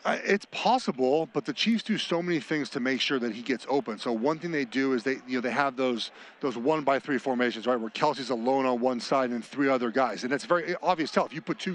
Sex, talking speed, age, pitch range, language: male, 270 wpm, 40-59, 145-210 Hz, English